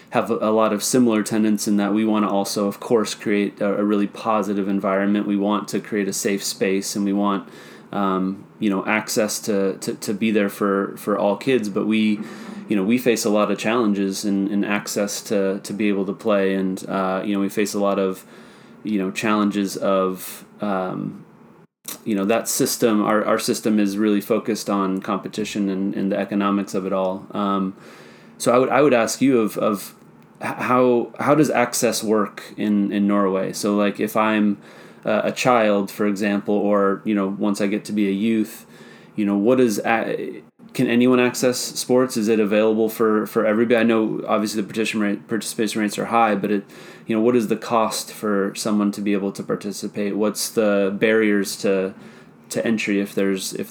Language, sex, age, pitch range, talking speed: English, male, 30-49, 100-110 Hz, 200 wpm